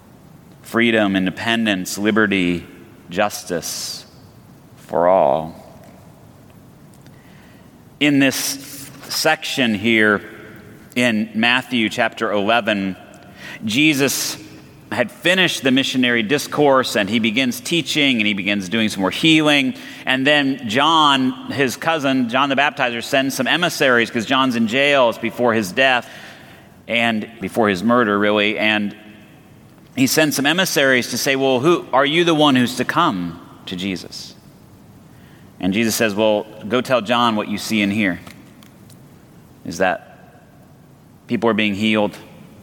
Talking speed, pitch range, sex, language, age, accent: 130 wpm, 105-155 Hz, male, English, 40-59, American